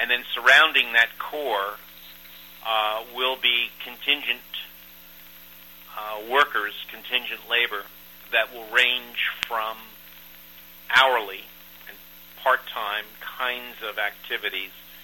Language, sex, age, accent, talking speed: English, male, 50-69, American, 90 wpm